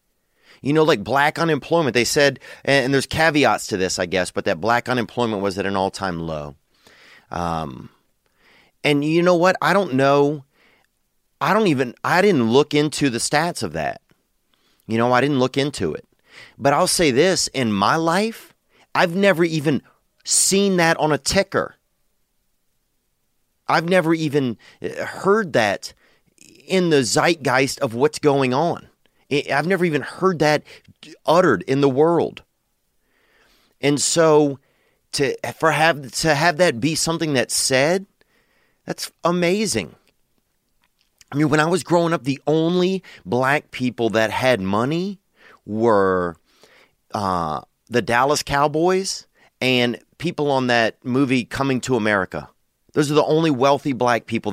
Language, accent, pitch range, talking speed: English, American, 120-160 Hz, 145 wpm